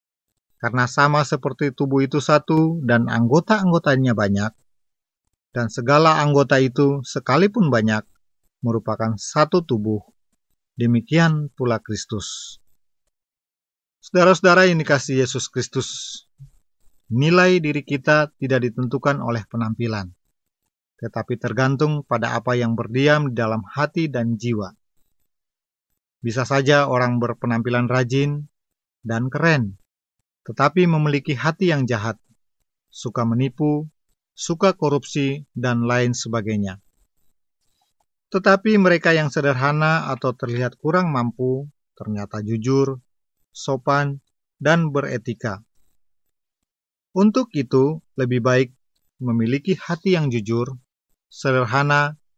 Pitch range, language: 115-150 Hz, Indonesian